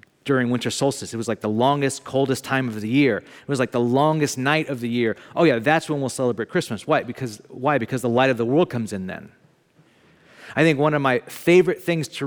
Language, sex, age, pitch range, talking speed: English, male, 40-59, 110-140 Hz, 240 wpm